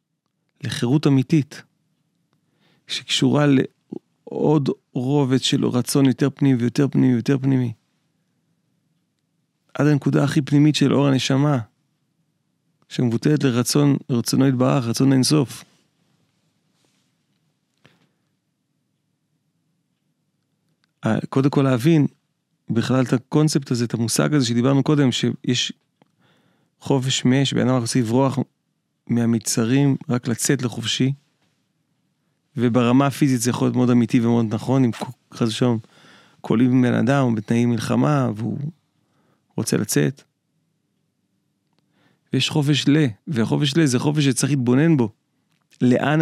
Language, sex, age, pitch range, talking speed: Hebrew, male, 40-59, 125-150 Hz, 105 wpm